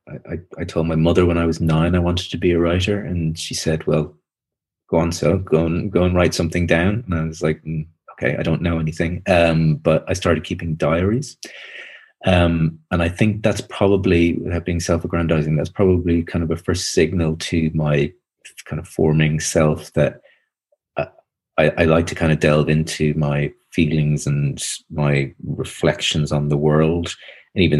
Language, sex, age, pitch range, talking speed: English, male, 30-49, 80-90 Hz, 185 wpm